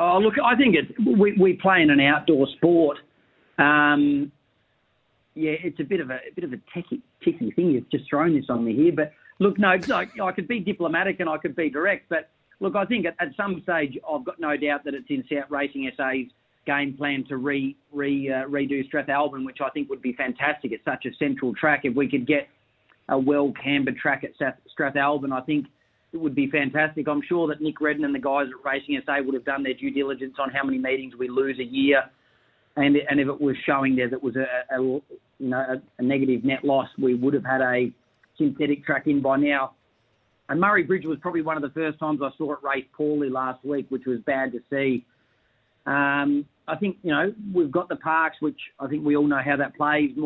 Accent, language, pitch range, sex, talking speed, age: Australian, English, 130-155 Hz, male, 225 wpm, 40-59